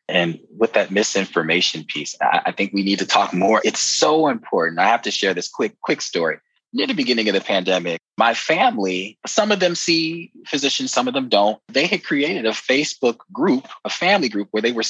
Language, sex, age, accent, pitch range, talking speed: English, male, 20-39, American, 100-170 Hz, 210 wpm